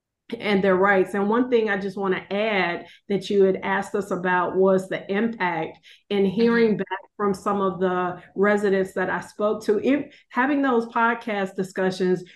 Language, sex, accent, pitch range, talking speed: English, female, American, 190-225 Hz, 175 wpm